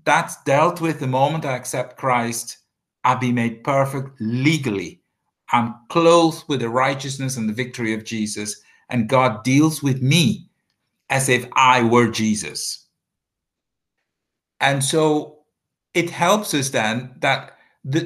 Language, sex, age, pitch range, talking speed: English, male, 50-69, 125-155 Hz, 135 wpm